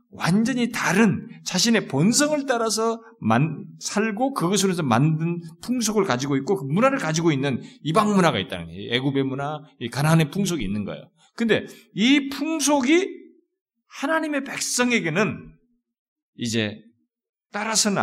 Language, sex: Korean, male